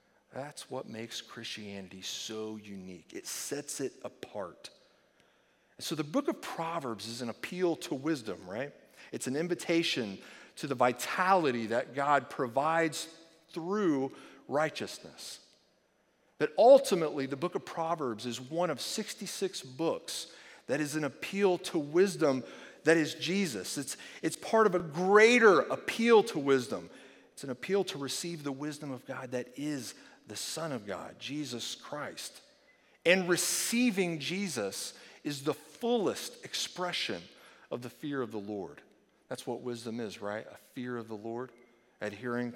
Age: 40-59